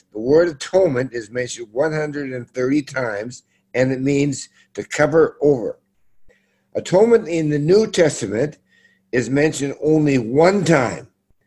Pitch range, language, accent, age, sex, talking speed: 125-160 Hz, English, American, 60-79, male, 120 wpm